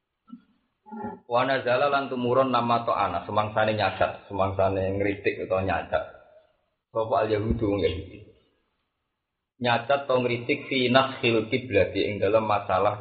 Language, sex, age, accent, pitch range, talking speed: Indonesian, male, 30-49, native, 105-145 Hz, 110 wpm